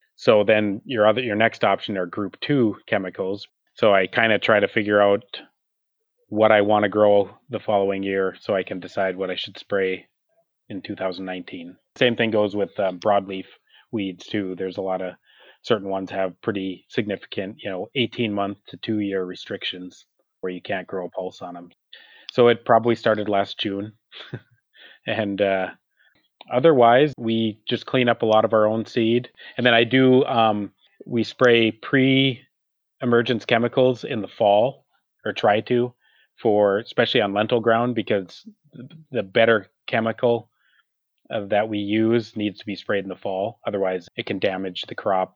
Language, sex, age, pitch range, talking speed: English, male, 30-49, 95-120 Hz, 170 wpm